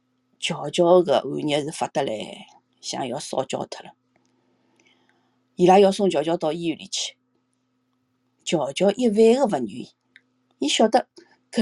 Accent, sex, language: native, female, Chinese